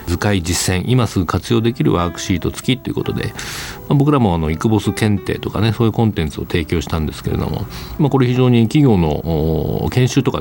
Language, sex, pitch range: Japanese, male, 90-125 Hz